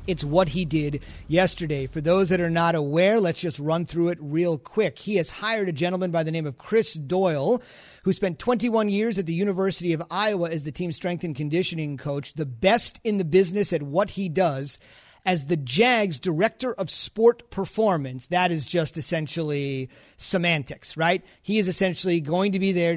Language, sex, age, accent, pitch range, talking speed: English, male, 30-49, American, 155-195 Hz, 195 wpm